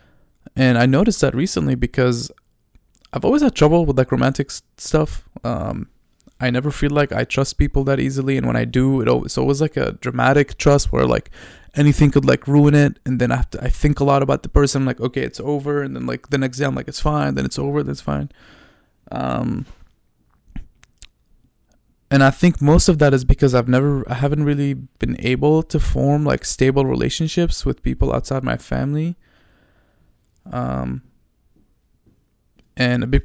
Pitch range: 120-145 Hz